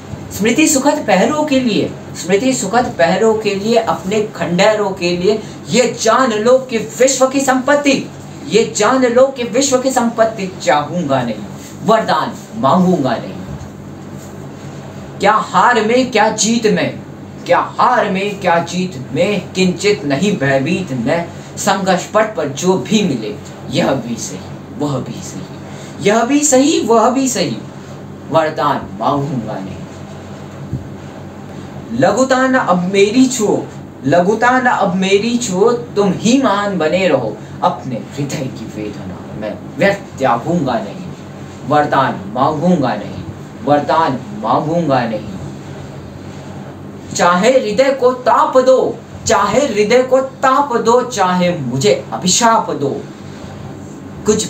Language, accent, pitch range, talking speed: Hindi, native, 170-245 Hz, 120 wpm